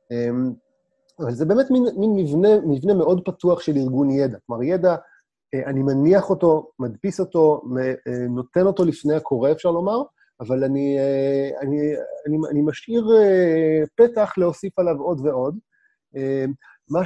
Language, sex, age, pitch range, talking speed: Hebrew, male, 30-49, 135-190 Hz, 130 wpm